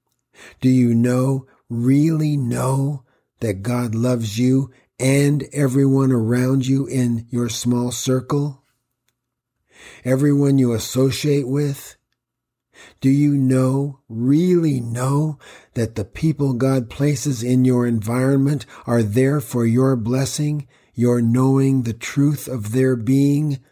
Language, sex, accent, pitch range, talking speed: English, male, American, 120-140 Hz, 115 wpm